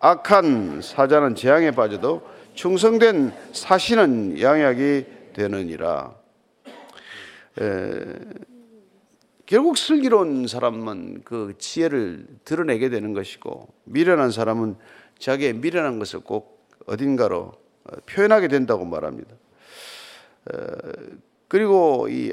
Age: 50-69